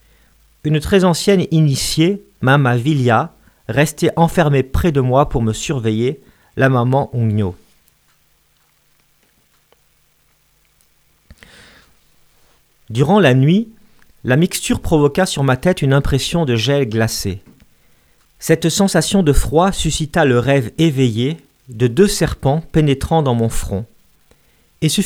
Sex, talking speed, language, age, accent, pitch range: male, 115 wpm, French, 40-59, French, 120-170 Hz